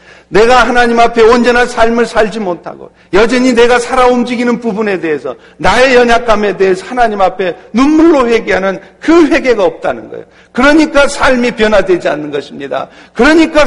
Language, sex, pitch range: Korean, male, 165-235 Hz